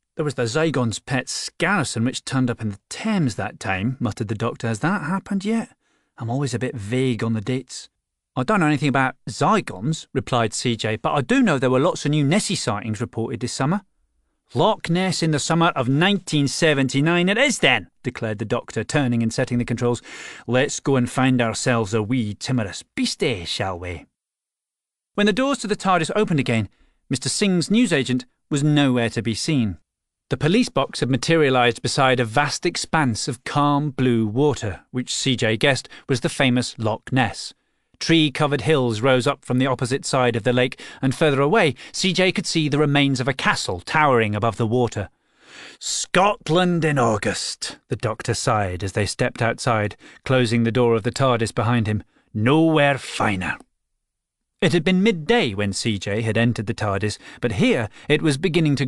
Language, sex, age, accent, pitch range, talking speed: English, male, 40-59, British, 115-155 Hz, 180 wpm